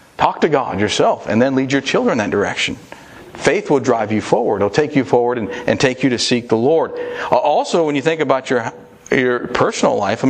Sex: male